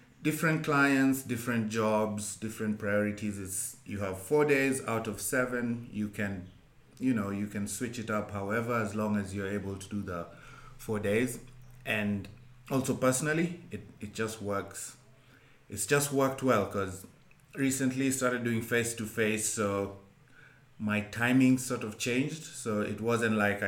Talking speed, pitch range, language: 155 wpm, 100-125 Hz, English